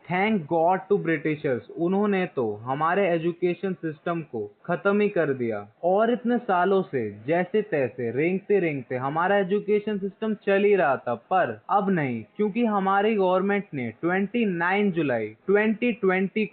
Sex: male